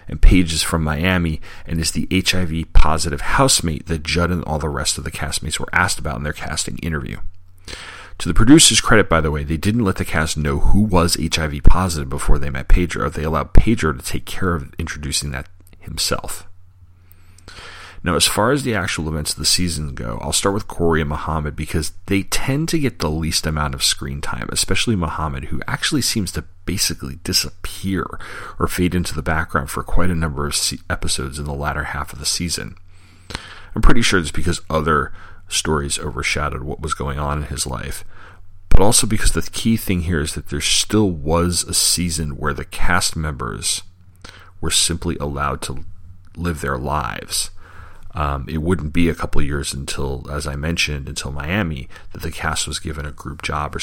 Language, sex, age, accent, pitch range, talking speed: English, male, 40-59, American, 75-90 Hz, 190 wpm